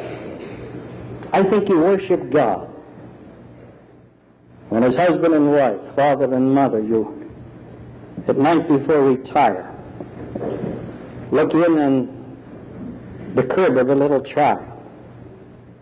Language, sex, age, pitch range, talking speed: English, male, 60-79, 135-160 Hz, 100 wpm